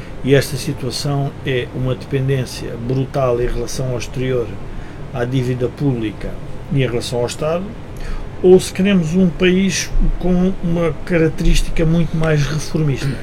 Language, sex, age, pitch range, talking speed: Portuguese, male, 50-69, 120-145 Hz, 135 wpm